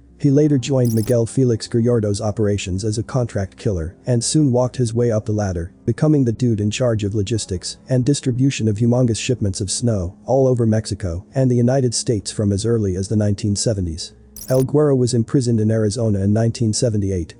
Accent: American